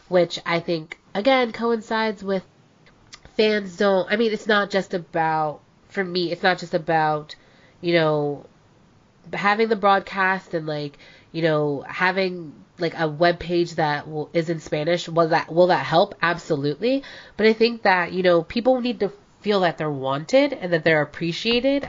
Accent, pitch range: American, 155-200 Hz